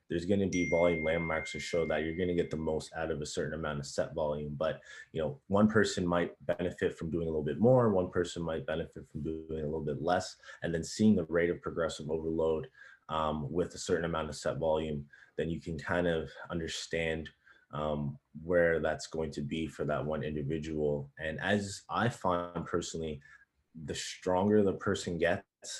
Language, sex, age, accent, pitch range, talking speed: English, male, 20-39, American, 75-85 Hz, 205 wpm